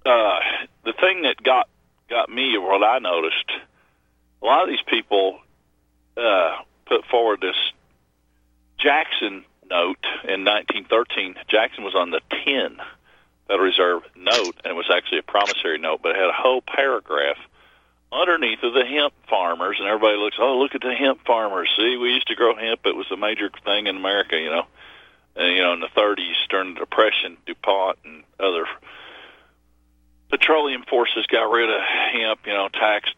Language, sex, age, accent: English, male, 40-59, American